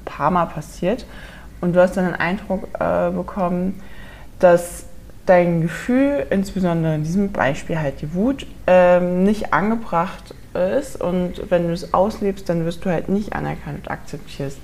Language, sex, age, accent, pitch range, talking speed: German, female, 20-39, German, 150-190 Hz, 150 wpm